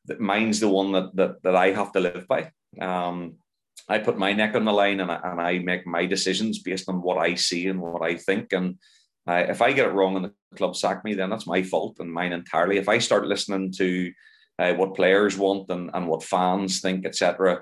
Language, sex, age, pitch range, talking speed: English, male, 30-49, 85-95 Hz, 240 wpm